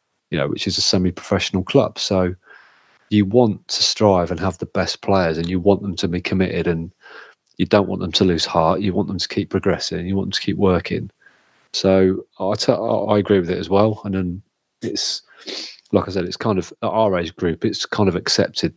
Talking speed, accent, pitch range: 220 wpm, British, 90-100 Hz